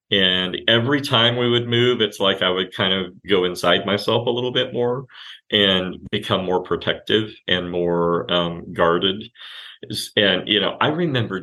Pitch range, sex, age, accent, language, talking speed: 90-115 Hz, male, 40-59, American, English, 170 wpm